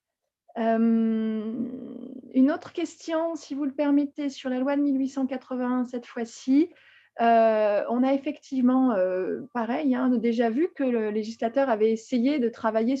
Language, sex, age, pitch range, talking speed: French, female, 20-39, 220-275 Hz, 150 wpm